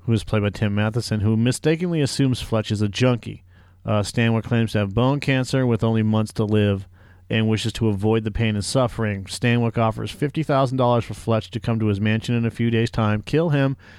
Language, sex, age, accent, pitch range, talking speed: English, male, 40-59, American, 105-125 Hz, 215 wpm